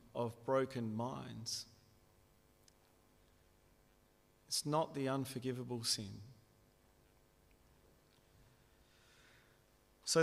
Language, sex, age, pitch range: English, male, 40-59, 115-135 Hz